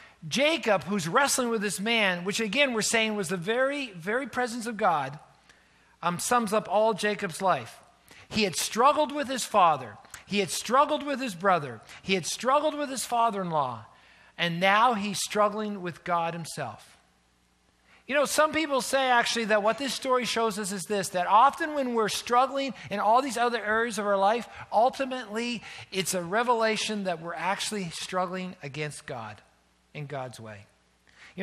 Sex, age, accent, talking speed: male, 50-69, American, 170 wpm